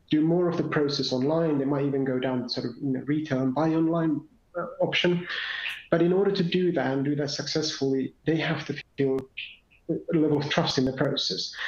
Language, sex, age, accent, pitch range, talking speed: English, male, 30-49, British, 140-165 Hz, 215 wpm